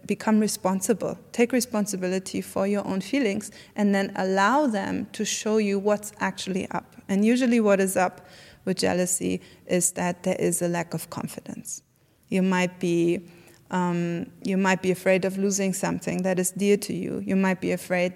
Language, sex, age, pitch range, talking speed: English, female, 20-39, 180-200 Hz, 175 wpm